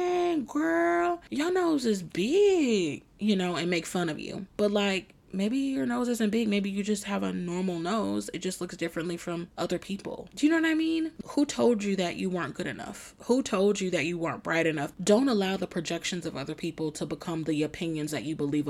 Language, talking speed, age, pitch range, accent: English, 220 wpm, 20-39, 165-210 Hz, American